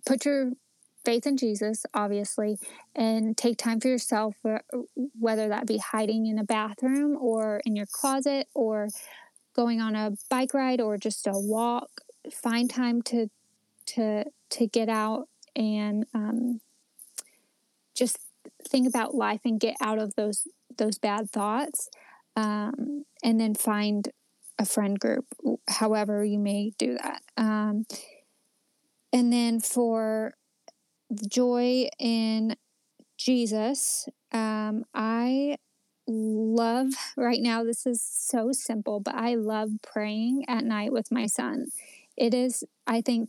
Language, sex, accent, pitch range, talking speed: English, female, American, 220-260 Hz, 130 wpm